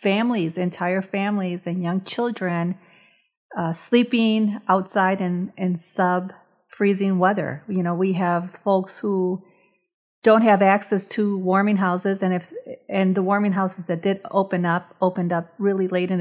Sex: female